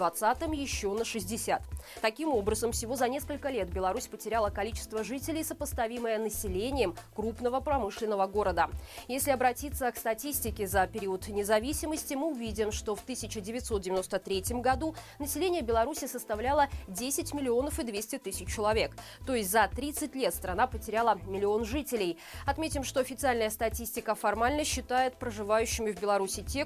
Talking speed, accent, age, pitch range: 135 wpm, native, 20-39, 200-275 Hz